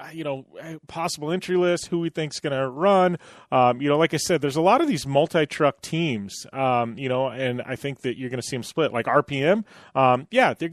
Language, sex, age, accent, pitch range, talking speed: English, male, 30-49, American, 130-170 Hz, 240 wpm